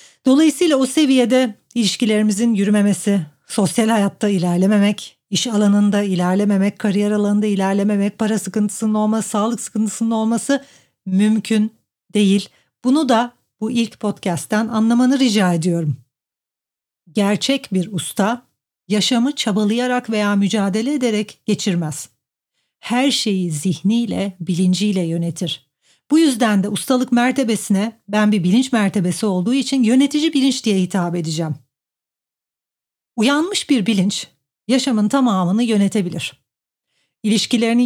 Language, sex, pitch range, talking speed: Turkish, female, 185-230 Hz, 105 wpm